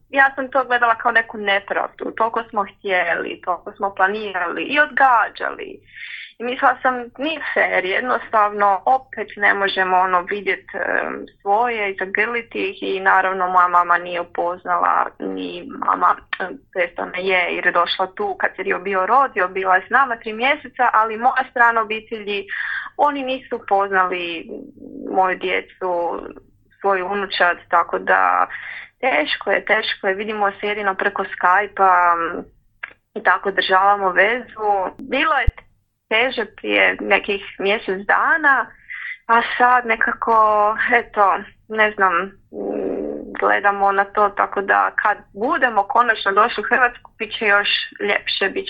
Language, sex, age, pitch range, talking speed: Croatian, female, 20-39, 190-235 Hz, 130 wpm